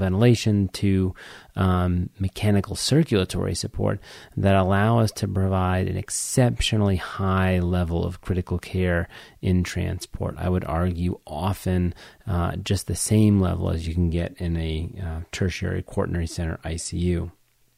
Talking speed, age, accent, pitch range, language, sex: 135 wpm, 30-49, American, 90-105 Hz, English, male